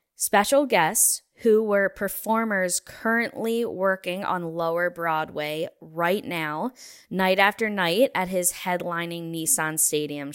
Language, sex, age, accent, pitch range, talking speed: English, female, 10-29, American, 160-220 Hz, 115 wpm